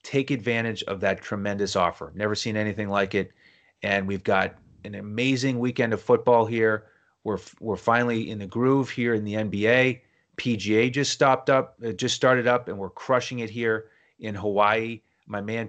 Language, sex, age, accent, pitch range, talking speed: English, male, 30-49, American, 100-120 Hz, 175 wpm